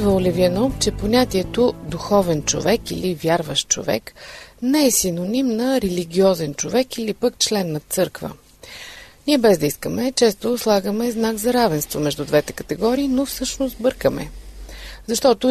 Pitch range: 170-245 Hz